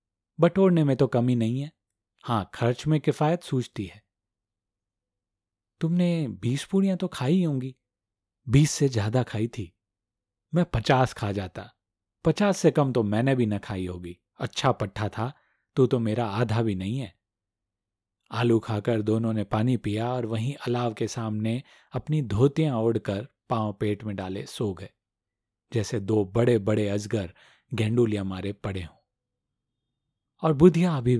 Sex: male